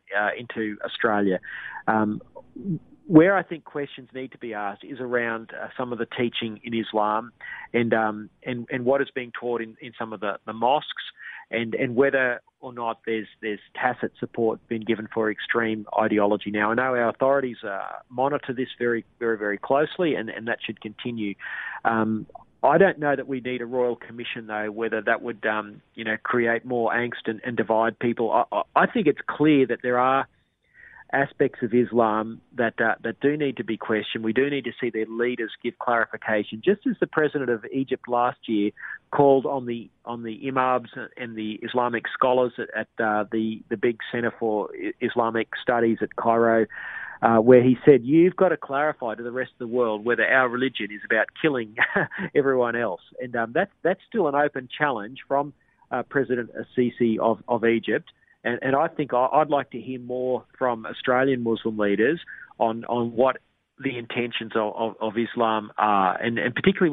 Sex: male